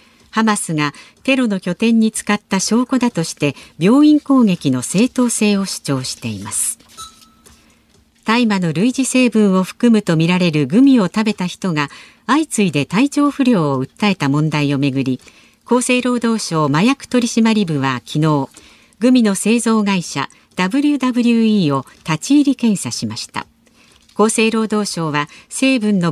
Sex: female